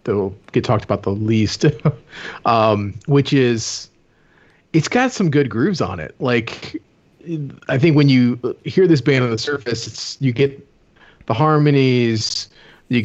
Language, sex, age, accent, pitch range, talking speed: English, male, 30-49, American, 110-135 Hz, 155 wpm